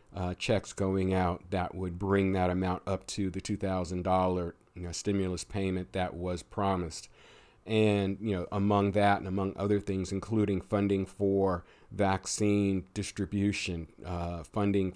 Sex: male